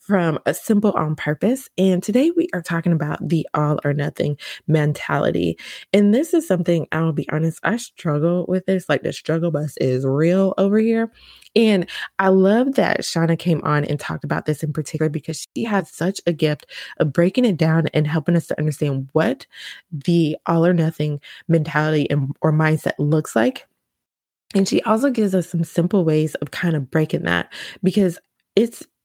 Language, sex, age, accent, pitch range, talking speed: English, female, 20-39, American, 155-190 Hz, 180 wpm